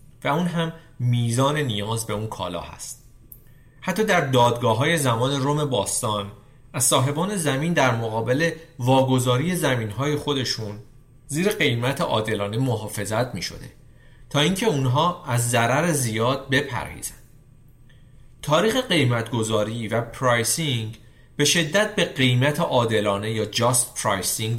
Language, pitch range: Persian, 115-145 Hz